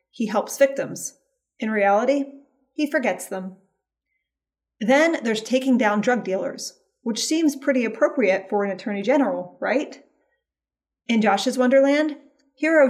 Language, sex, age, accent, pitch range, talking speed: English, female, 30-49, American, 205-270 Hz, 125 wpm